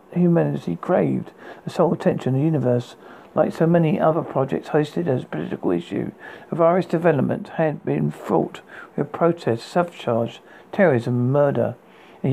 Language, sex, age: English, male, 50-69